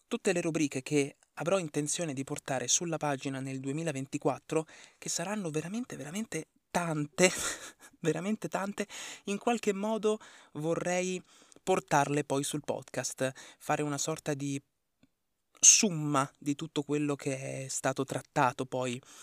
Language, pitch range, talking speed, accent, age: Italian, 130-155 Hz, 125 wpm, native, 20-39